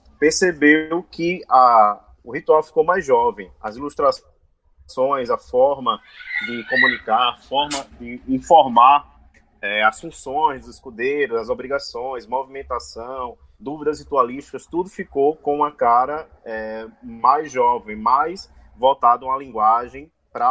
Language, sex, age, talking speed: Portuguese, male, 20-39, 120 wpm